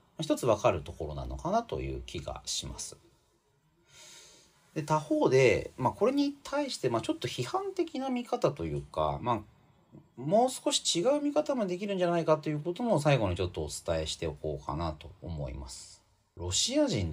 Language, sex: Japanese, male